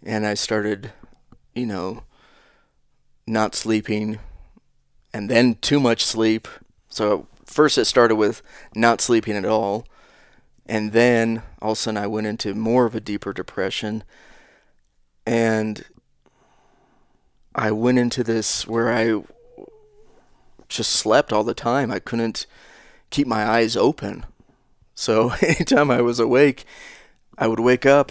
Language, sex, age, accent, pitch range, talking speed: English, male, 30-49, American, 110-125 Hz, 130 wpm